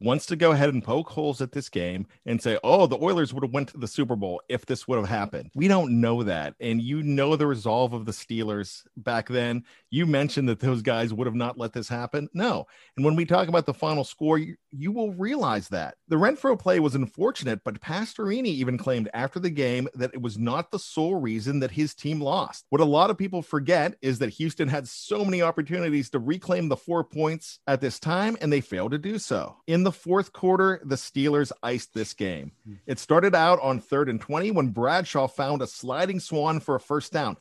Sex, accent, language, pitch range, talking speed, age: male, American, English, 125-170 Hz, 230 wpm, 40-59